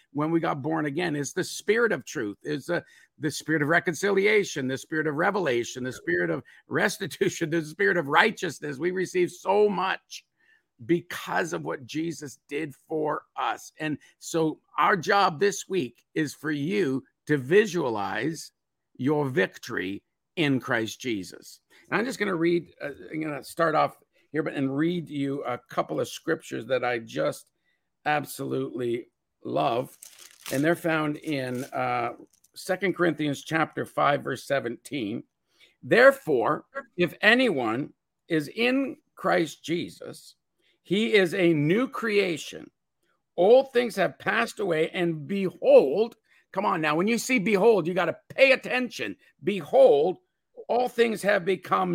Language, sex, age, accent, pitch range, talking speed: English, male, 50-69, American, 150-200 Hz, 150 wpm